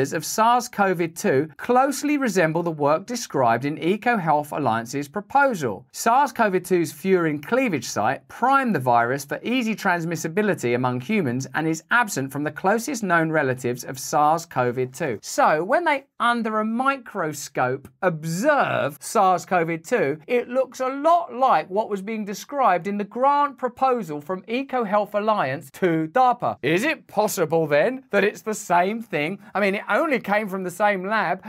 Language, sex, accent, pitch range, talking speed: English, male, British, 165-235 Hz, 145 wpm